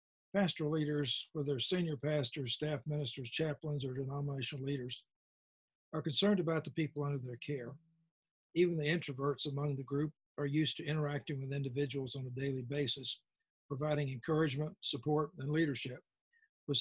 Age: 60-79